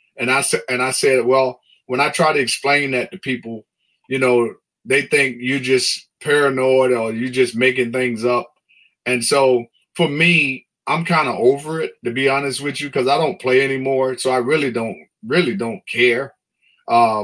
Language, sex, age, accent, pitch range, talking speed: English, male, 30-49, American, 120-145 Hz, 190 wpm